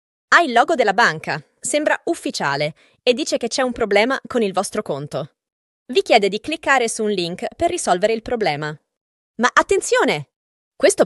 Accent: native